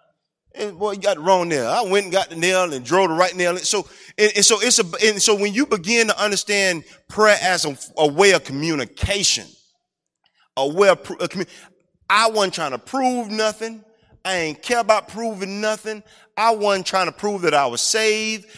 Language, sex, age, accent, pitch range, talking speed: English, male, 30-49, American, 160-215 Hz, 205 wpm